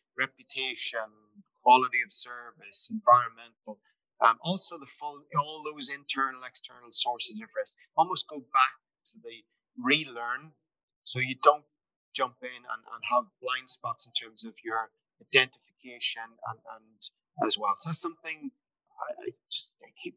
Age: 30-49